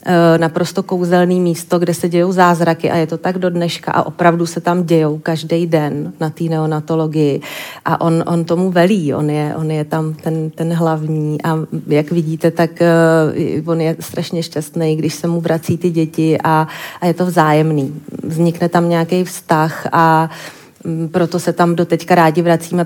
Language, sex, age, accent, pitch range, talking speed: Czech, female, 30-49, native, 160-175 Hz, 180 wpm